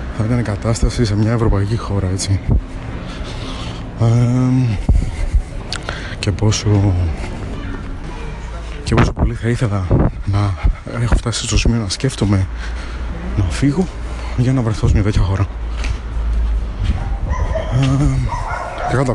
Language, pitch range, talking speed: Greek, 90-120 Hz, 100 wpm